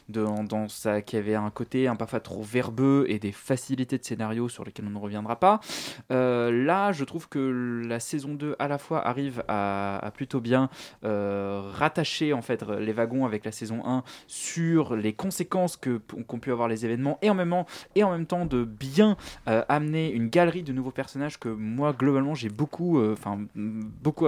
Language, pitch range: French, 110-140 Hz